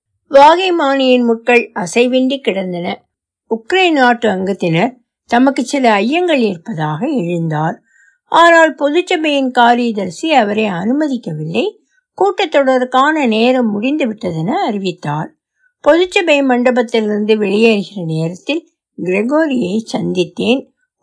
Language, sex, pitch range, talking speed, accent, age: Tamil, female, 180-255 Hz, 75 wpm, native, 60-79